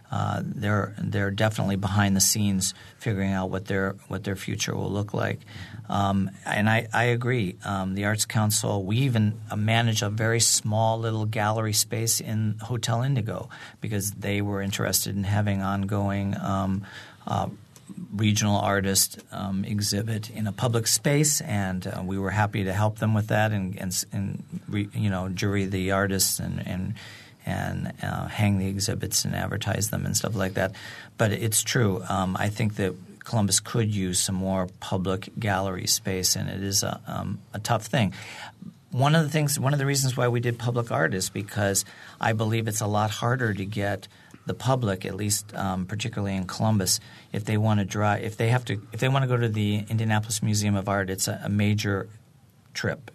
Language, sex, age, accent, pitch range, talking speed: English, male, 40-59, American, 100-110 Hz, 190 wpm